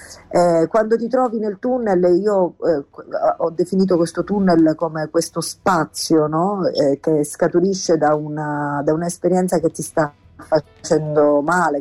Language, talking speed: Italian, 140 wpm